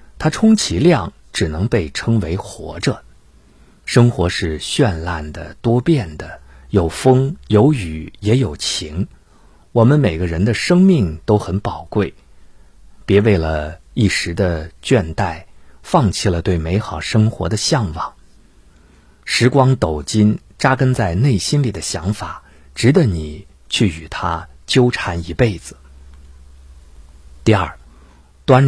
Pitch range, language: 80-120 Hz, Chinese